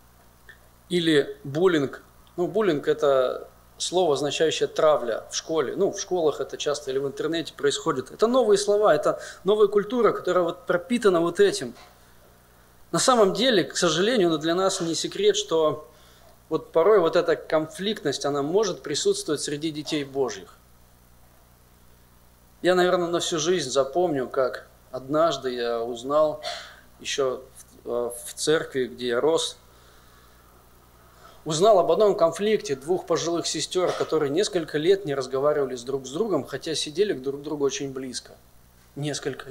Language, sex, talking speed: Russian, male, 145 wpm